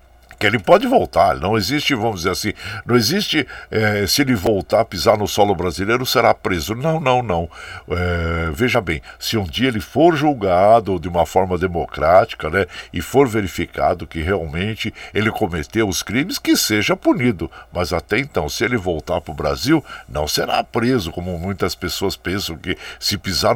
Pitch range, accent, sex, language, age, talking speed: 85-125 Hz, Brazilian, male, Portuguese, 60-79, 175 wpm